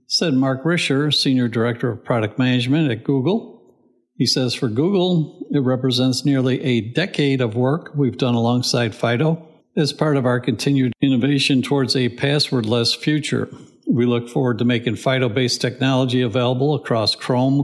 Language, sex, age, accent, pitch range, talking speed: English, male, 60-79, American, 120-145 Hz, 155 wpm